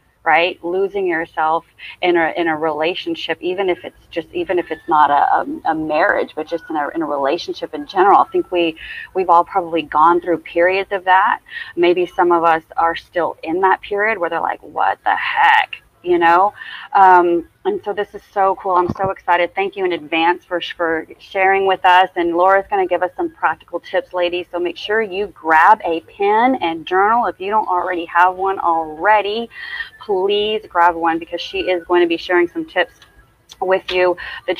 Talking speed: 200 wpm